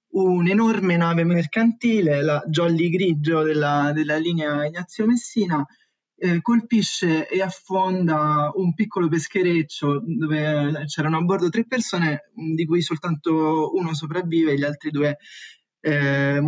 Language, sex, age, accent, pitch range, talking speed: Italian, male, 20-39, native, 155-180 Hz, 125 wpm